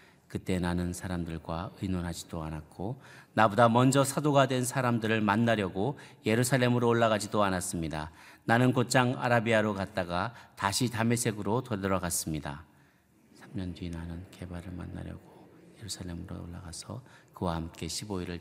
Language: Korean